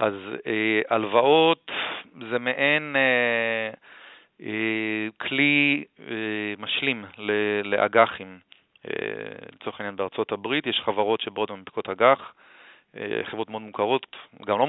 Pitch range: 105-125 Hz